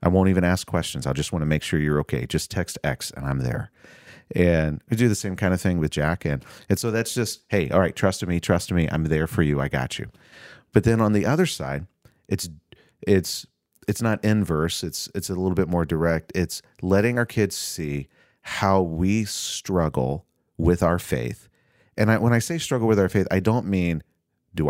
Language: English